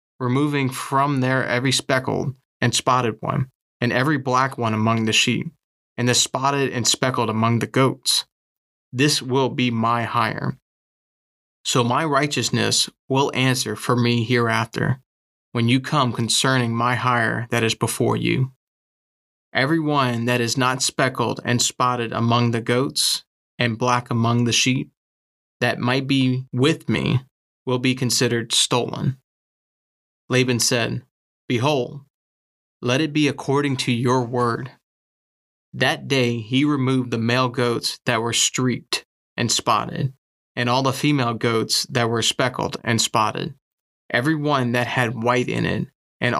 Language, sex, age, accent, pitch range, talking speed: English, male, 30-49, American, 115-135 Hz, 145 wpm